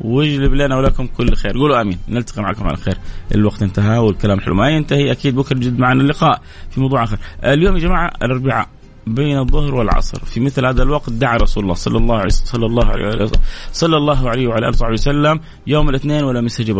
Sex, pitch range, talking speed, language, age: male, 105-140 Hz, 200 wpm, Arabic, 30-49